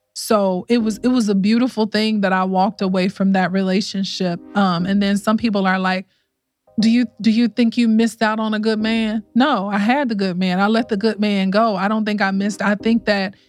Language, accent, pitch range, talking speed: English, American, 200-240 Hz, 240 wpm